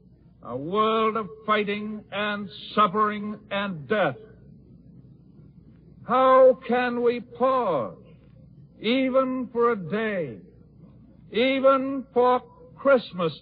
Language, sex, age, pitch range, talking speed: English, male, 60-79, 175-230 Hz, 85 wpm